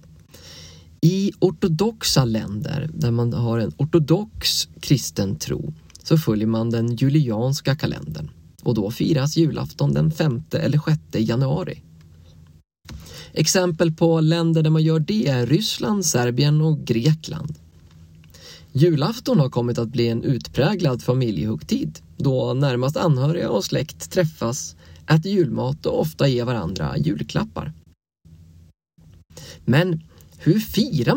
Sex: male